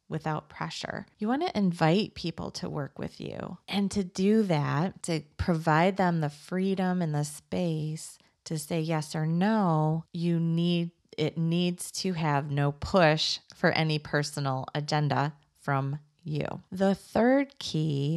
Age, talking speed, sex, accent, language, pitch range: 30-49, 150 wpm, female, American, English, 155-190 Hz